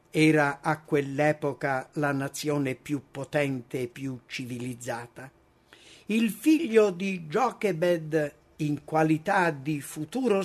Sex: male